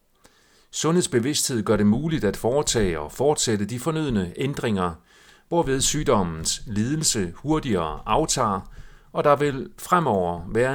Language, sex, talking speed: Danish, male, 115 wpm